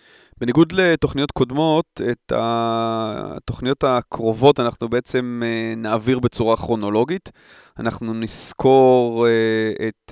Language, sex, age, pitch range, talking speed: Hebrew, male, 30-49, 115-145 Hz, 85 wpm